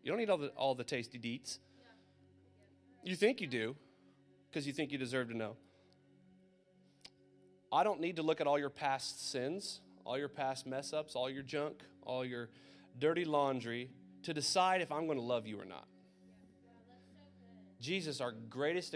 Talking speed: 175 wpm